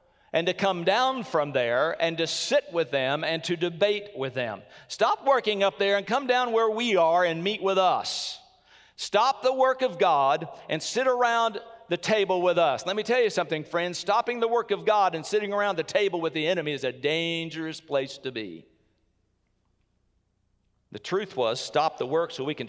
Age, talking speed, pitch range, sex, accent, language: 50-69, 200 wpm, 145-220 Hz, male, American, English